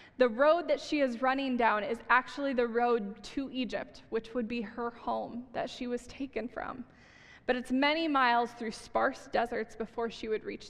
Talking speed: 190 wpm